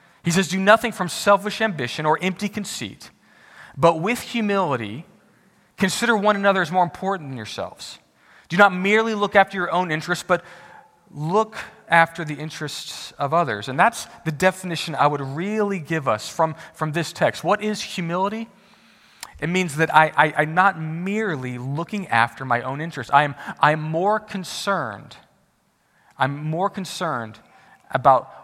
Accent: American